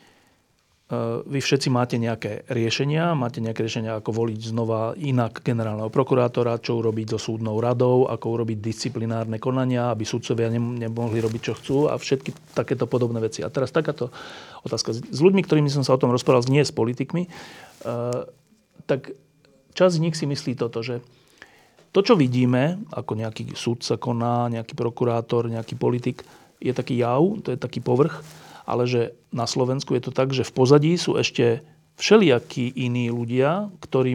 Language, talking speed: Slovak, 160 wpm